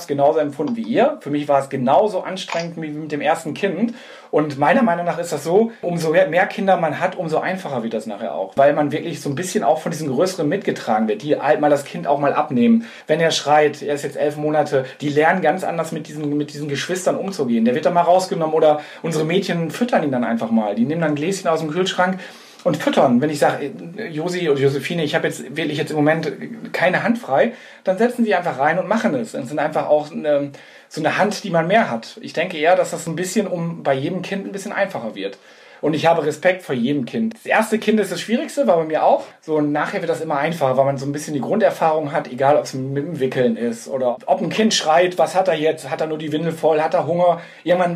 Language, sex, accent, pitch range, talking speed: German, male, German, 150-190 Hz, 255 wpm